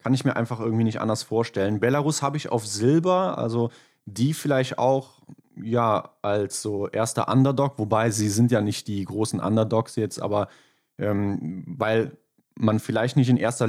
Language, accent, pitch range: German, German, 105-135 Hz